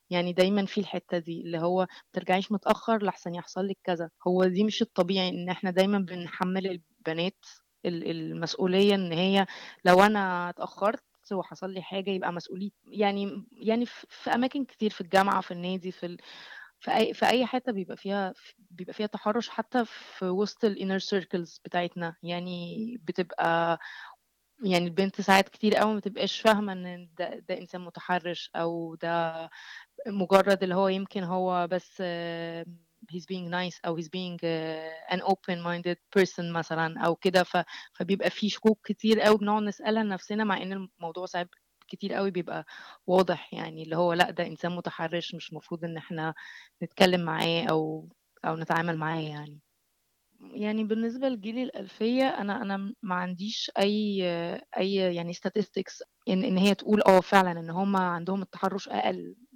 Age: 20-39